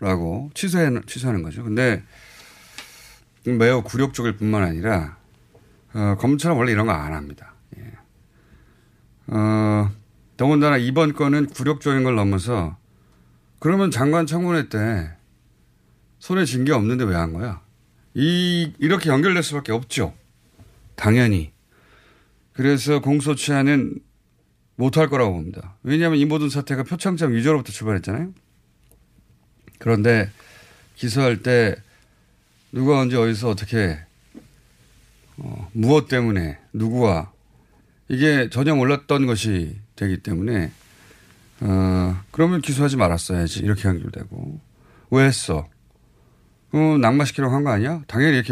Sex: male